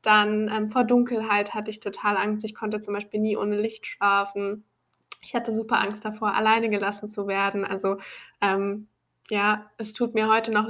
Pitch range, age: 205-230 Hz, 10-29